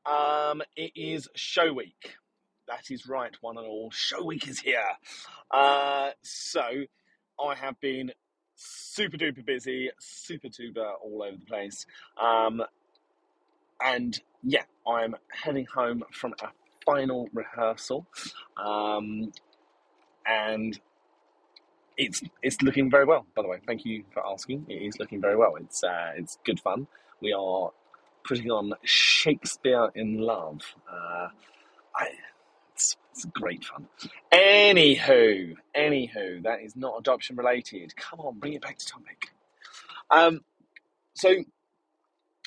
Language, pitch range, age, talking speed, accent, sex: English, 115-155 Hz, 30-49, 130 wpm, British, male